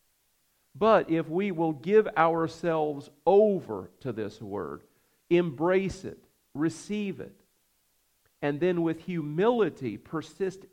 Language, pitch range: English, 130-165 Hz